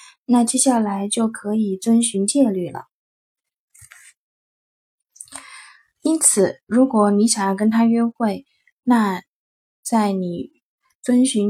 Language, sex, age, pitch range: Chinese, female, 20-39, 200-245 Hz